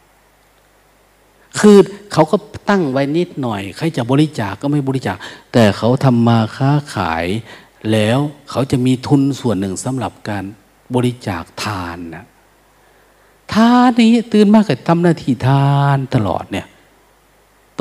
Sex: male